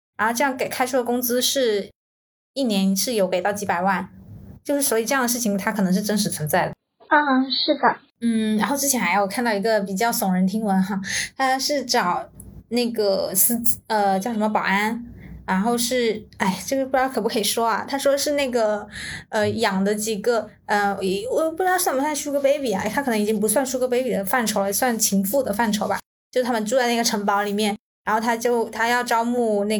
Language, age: Chinese, 20-39